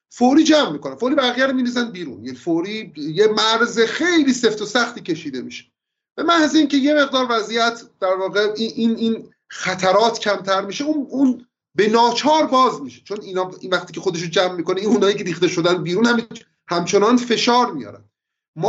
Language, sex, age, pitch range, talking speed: Persian, male, 30-49, 180-265 Hz, 185 wpm